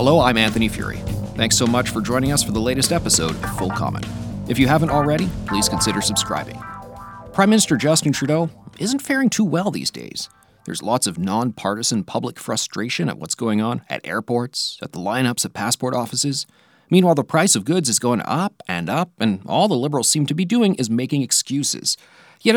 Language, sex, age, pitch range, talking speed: English, male, 40-59, 115-175 Hz, 200 wpm